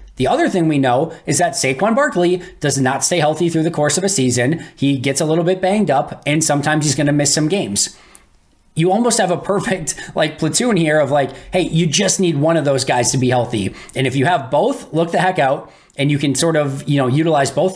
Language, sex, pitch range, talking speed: English, male, 130-165 Hz, 245 wpm